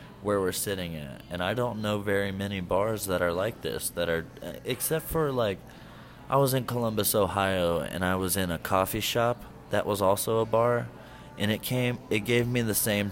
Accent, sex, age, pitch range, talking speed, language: American, male, 20-39, 85-110 Hz, 205 wpm, English